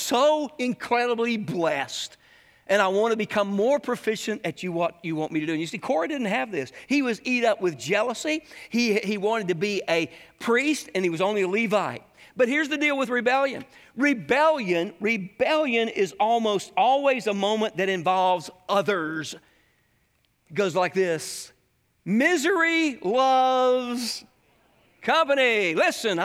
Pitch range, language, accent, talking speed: 200-280 Hz, English, American, 155 wpm